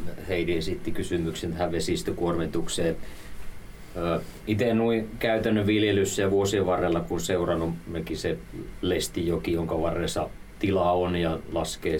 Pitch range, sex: 80-95 Hz, male